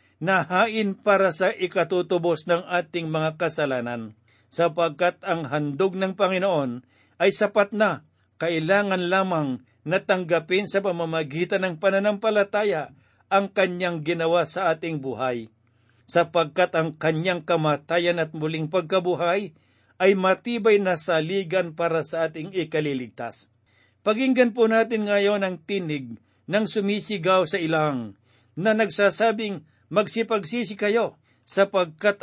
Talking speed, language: 110 wpm, Filipino